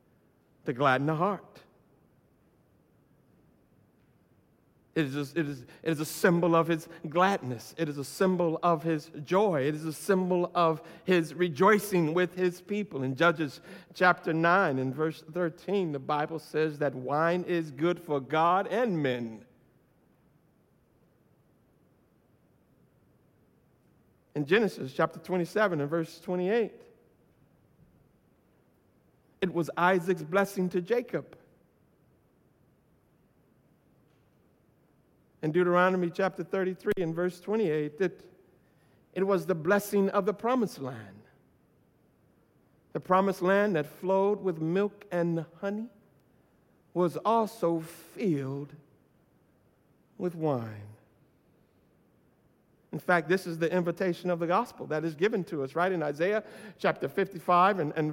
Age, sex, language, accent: 60-79, male, English, American